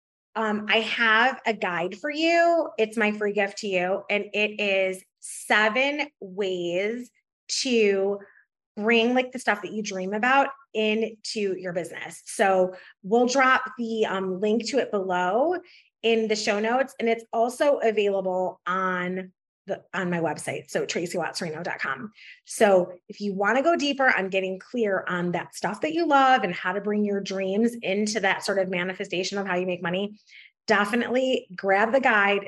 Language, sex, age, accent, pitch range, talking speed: English, female, 20-39, American, 190-240 Hz, 165 wpm